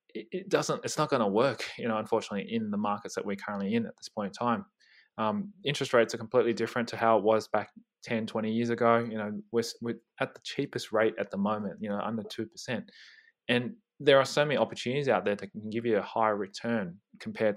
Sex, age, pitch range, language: male, 20-39, 105-130 Hz, English